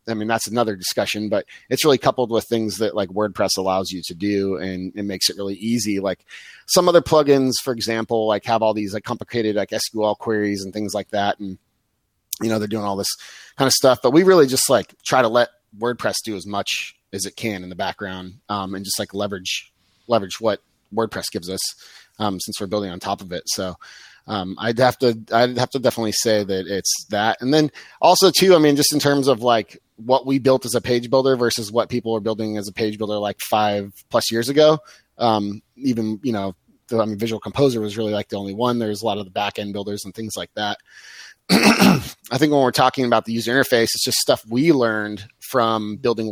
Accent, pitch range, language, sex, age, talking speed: American, 100-120 Hz, English, male, 30-49, 230 wpm